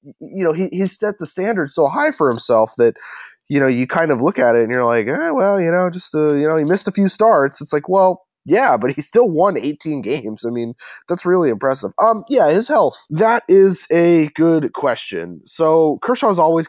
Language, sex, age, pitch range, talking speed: English, male, 20-39, 115-170 Hz, 230 wpm